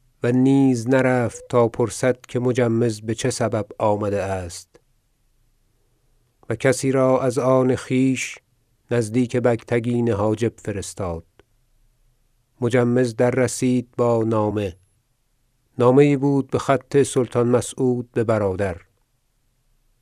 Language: Persian